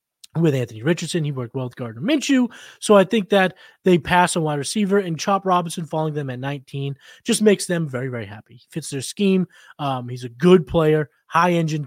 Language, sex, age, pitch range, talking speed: English, male, 20-39, 140-185 Hz, 205 wpm